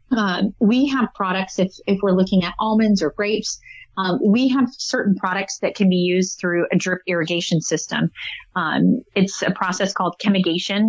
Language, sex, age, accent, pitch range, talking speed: English, female, 30-49, American, 175-200 Hz, 175 wpm